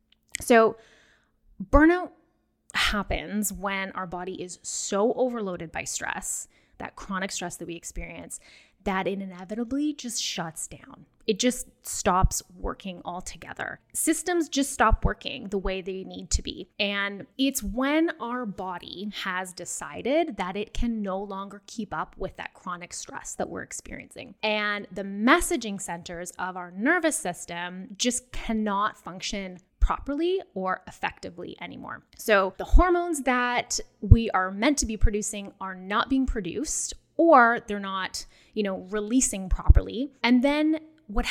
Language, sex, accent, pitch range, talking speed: English, female, American, 195-265 Hz, 140 wpm